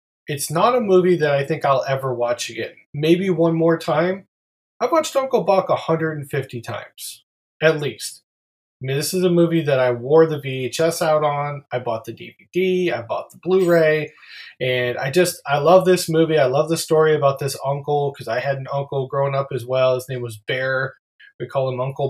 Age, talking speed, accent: 20-39, 205 wpm, American